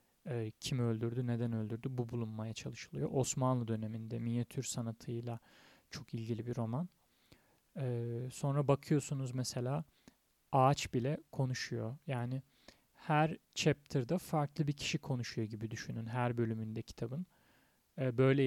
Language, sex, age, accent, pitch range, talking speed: Turkish, male, 40-59, native, 115-140 Hz, 110 wpm